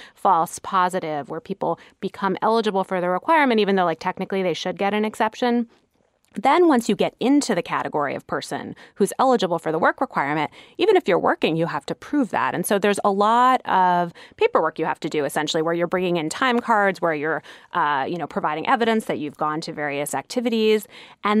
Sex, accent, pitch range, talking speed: female, American, 155-210 Hz, 205 wpm